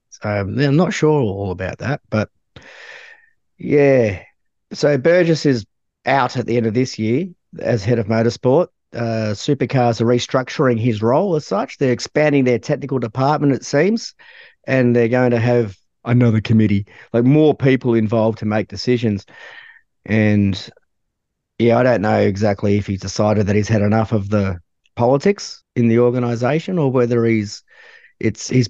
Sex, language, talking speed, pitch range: male, English, 160 wpm, 110-140 Hz